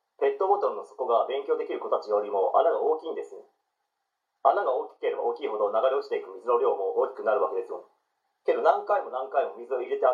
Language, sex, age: Japanese, male, 40-59